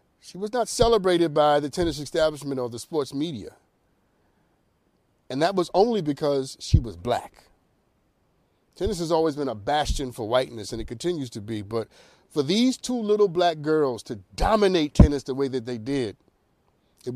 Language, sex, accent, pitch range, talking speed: English, male, American, 120-160 Hz, 170 wpm